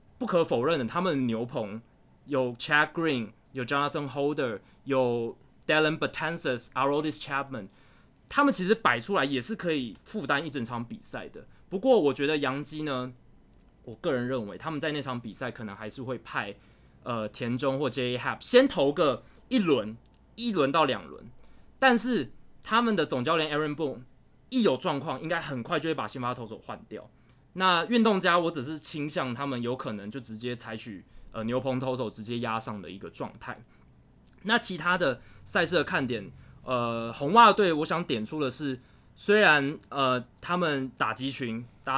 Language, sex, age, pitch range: Chinese, male, 20-39, 120-155 Hz